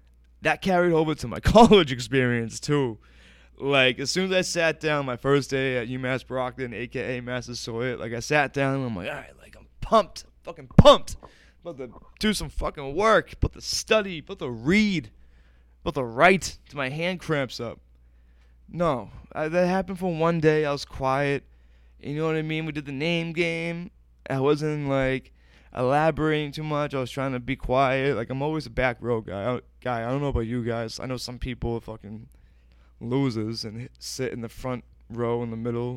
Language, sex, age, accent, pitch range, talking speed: English, male, 20-39, American, 110-150 Hz, 205 wpm